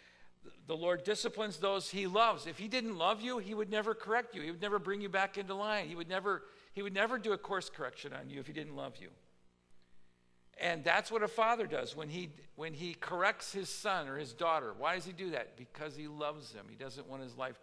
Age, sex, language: 50-69, male, English